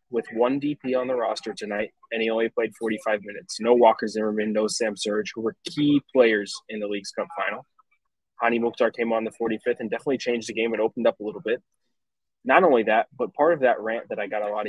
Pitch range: 115-155 Hz